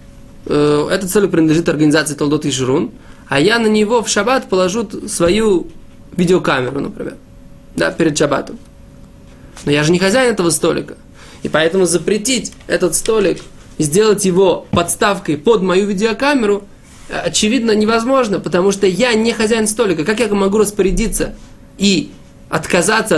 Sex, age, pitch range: male, 20-39, 155-210 Hz